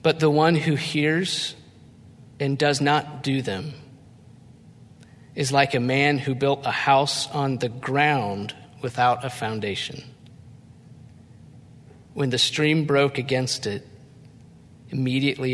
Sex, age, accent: male, 40-59, American